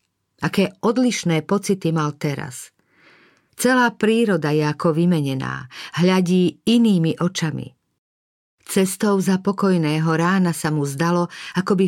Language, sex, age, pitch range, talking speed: Slovak, female, 50-69, 155-190 Hz, 110 wpm